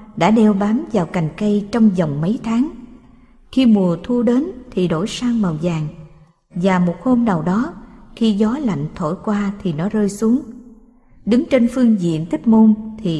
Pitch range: 180-235 Hz